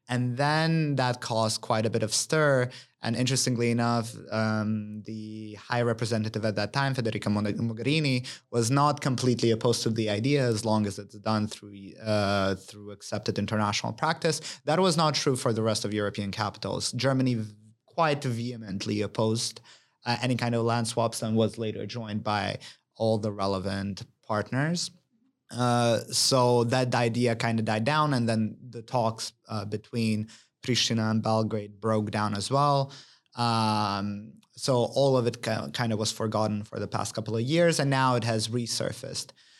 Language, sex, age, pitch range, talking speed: English, male, 20-39, 110-130 Hz, 165 wpm